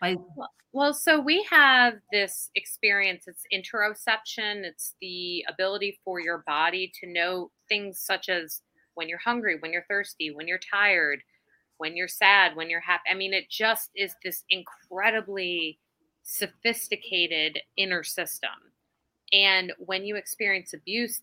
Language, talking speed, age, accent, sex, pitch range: English, 140 wpm, 30-49, American, female, 170-205 Hz